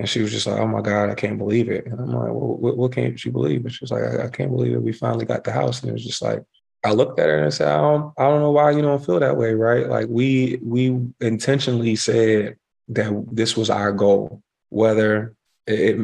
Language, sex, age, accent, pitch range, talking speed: English, male, 20-39, American, 105-115 Hz, 265 wpm